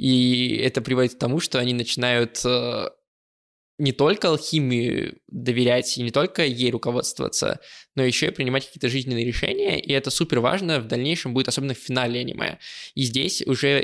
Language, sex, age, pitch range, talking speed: Russian, male, 20-39, 120-135 Hz, 160 wpm